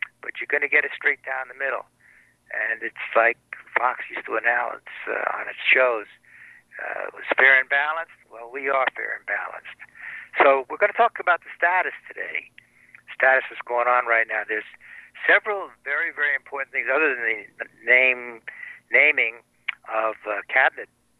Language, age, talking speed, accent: English, 60-79, 180 wpm, American